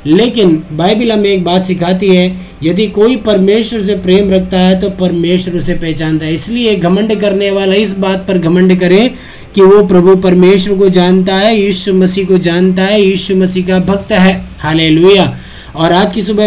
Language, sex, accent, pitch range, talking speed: Hindi, male, native, 180-200 Hz, 180 wpm